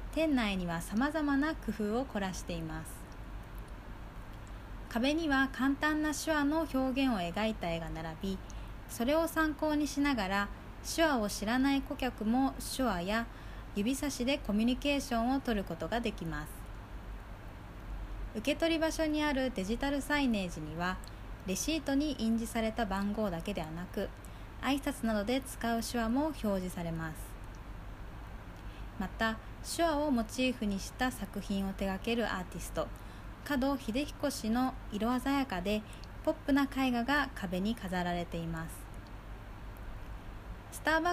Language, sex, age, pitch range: Japanese, female, 20-39, 165-265 Hz